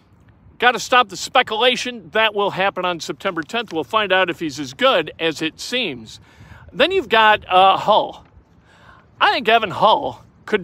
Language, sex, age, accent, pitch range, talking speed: English, male, 50-69, American, 180-230 Hz, 175 wpm